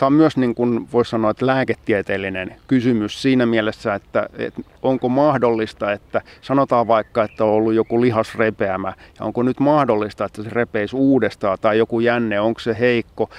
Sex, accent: male, native